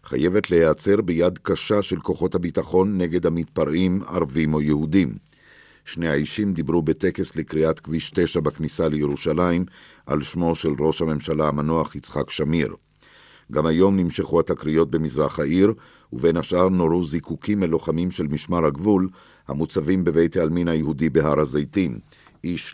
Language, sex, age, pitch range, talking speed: Hebrew, male, 50-69, 80-90 Hz, 130 wpm